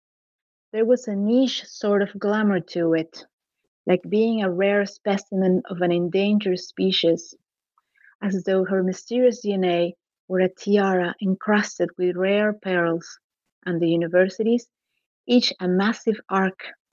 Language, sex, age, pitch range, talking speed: English, female, 30-49, 175-205 Hz, 130 wpm